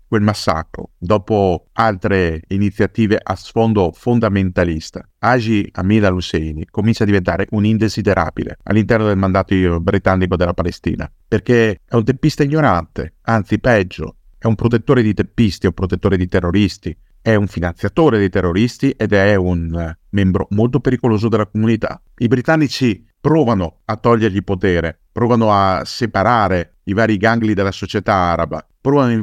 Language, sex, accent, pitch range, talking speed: Italian, male, native, 95-120 Hz, 140 wpm